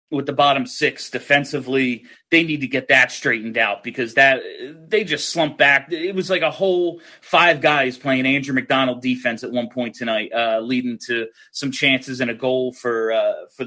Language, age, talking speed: English, 30-49, 195 wpm